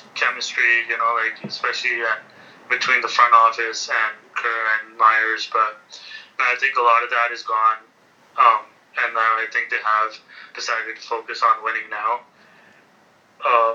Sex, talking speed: male, 155 wpm